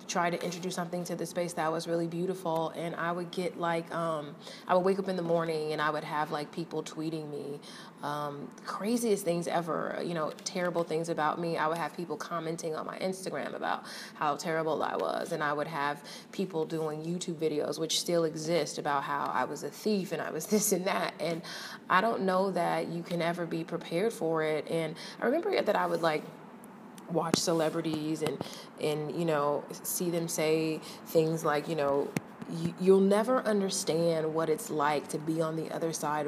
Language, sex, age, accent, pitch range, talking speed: English, female, 20-39, American, 160-205 Hz, 200 wpm